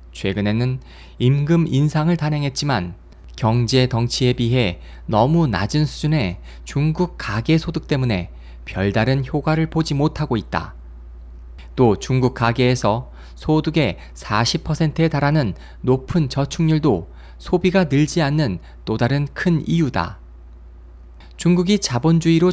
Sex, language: male, Korean